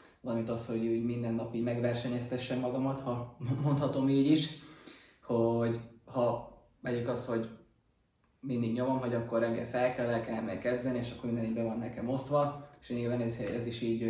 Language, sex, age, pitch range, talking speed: Hungarian, male, 20-39, 115-130 Hz, 160 wpm